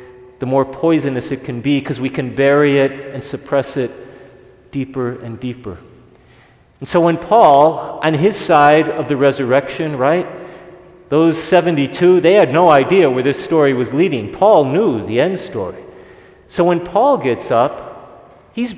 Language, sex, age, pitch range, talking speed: English, male, 40-59, 130-160 Hz, 160 wpm